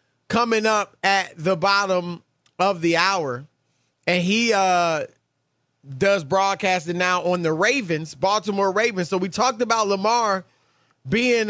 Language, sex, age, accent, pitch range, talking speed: English, male, 20-39, American, 165-220 Hz, 130 wpm